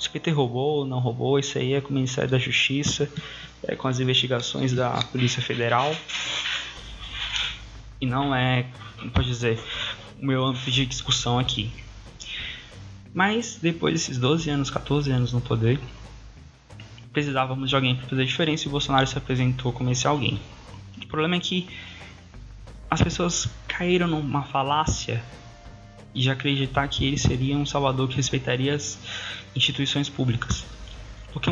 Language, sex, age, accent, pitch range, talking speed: Portuguese, male, 20-39, Brazilian, 115-145 Hz, 150 wpm